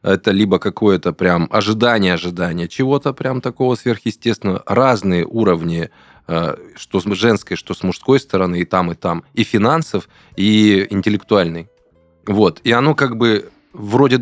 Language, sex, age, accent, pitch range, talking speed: Russian, male, 20-39, native, 85-115 Hz, 135 wpm